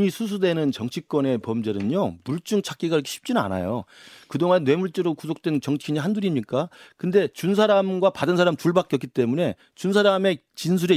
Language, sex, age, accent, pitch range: Korean, male, 40-59, native, 125-180 Hz